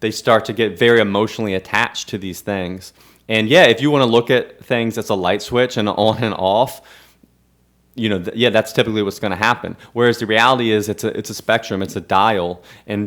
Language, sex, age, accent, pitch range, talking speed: English, male, 20-39, American, 95-115 Hz, 230 wpm